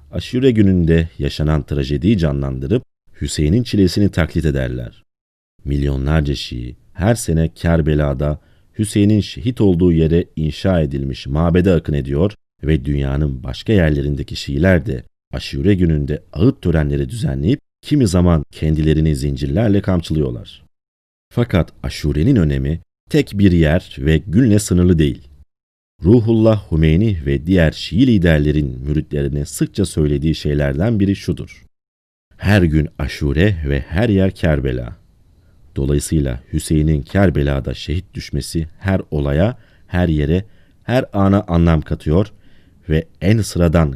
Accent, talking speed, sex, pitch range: native, 115 wpm, male, 75-95 Hz